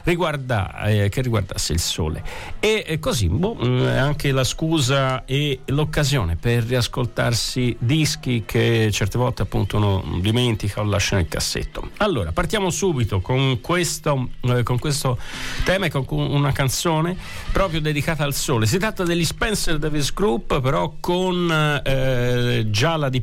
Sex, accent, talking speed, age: male, native, 150 wpm, 50-69